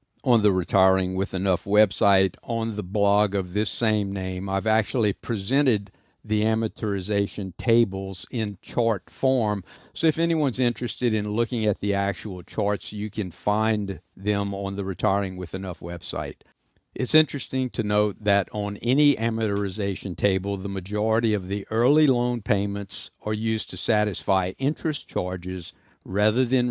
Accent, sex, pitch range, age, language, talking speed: American, male, 100-120 Hz, 60-79, English, 150 wpm